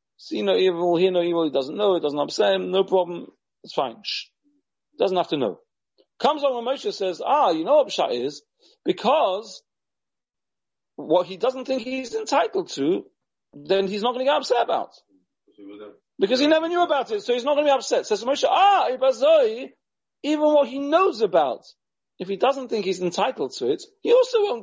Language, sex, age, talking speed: English, male, 40-59, 195 wpm